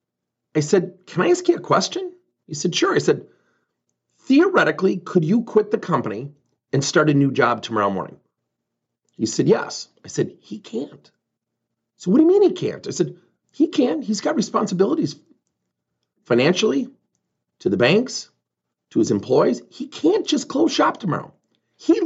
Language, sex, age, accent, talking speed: English, male, 40-59, American, 165 wpm